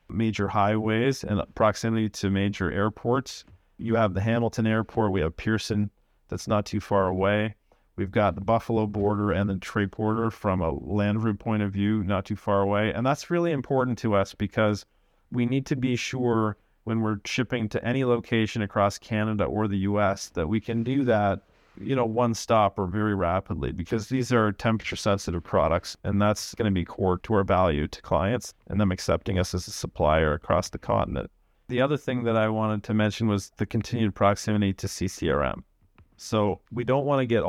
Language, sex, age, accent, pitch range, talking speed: English, male, 40-59, American, 100-115 Hz, 195 wpm